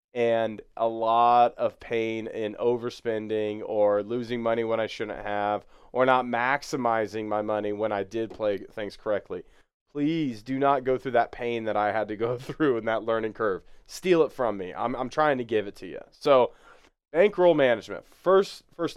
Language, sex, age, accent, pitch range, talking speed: English, male, 30-49, American, 115-160 Hz, 185 wpm